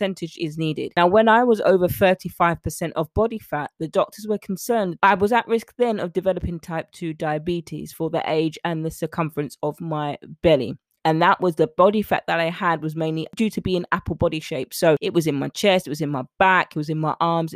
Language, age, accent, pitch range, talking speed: English, 20-39, British, 155-190 Hz, 230 wpm